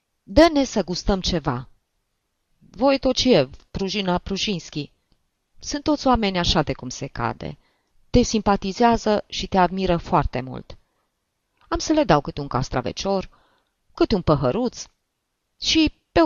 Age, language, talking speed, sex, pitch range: 30-49, Romanian, 135 wpm, female, 125-200 Hz